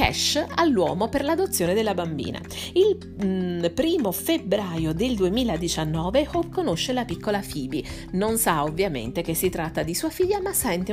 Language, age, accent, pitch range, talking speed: Italian, 40-59, native, 165-230 Hz, 150 wpm